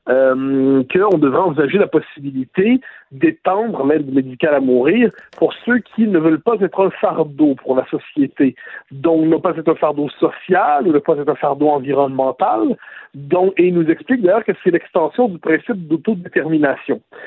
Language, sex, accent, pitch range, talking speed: French, male, French, 150-220 Hz, 165 wpm